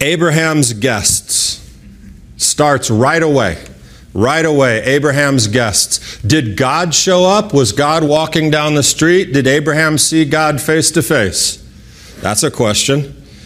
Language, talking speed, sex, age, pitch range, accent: English, 130 wpm, male, 40-59, 125-180 Hz, American